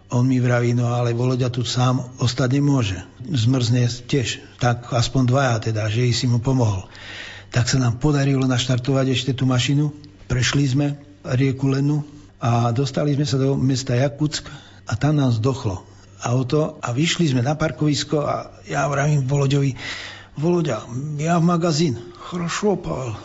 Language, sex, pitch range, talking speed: Slovak, male, 125-150 Hz, 150 wpm